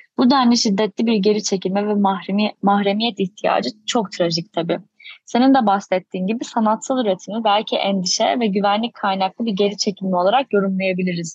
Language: Turkish